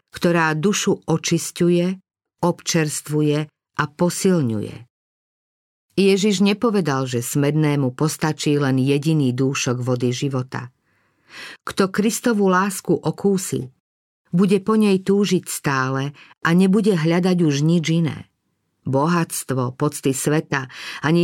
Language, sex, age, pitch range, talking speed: Slovak, female, 50-69, 145-185 Hz, 100 wpm